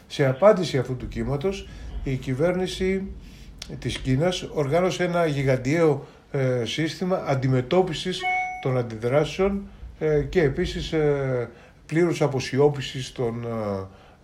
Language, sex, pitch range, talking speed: Greek, male, 120-165 Hz, 90 wpm